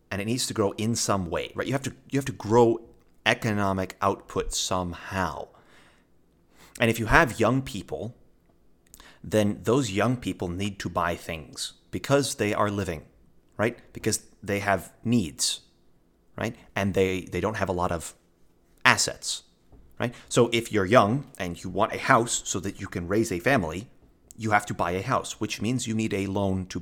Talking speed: 185 wpm